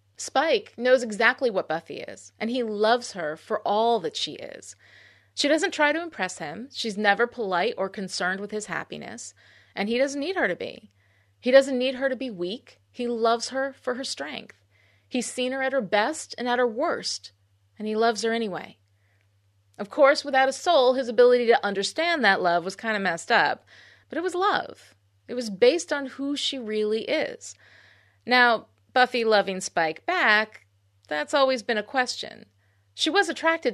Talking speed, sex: 185 wpm, female